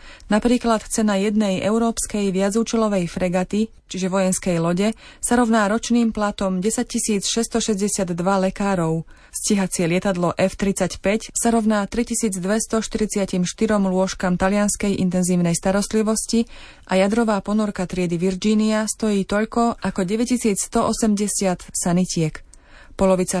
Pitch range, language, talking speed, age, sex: 185-215 Hz, Slovak, 100 wpm, 30-49, female